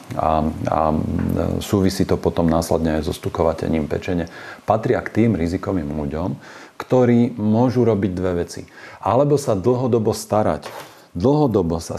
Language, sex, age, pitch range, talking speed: Slovak, male, 40-59, 85-110 Hz, 125 wpm